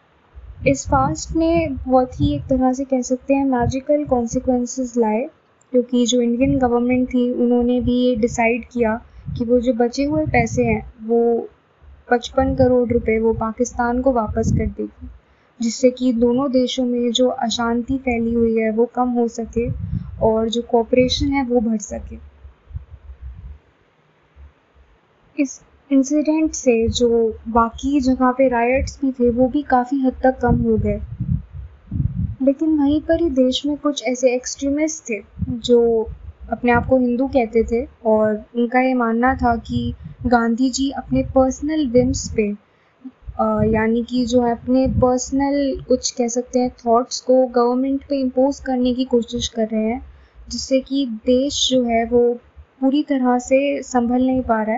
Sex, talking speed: female, 155 wpm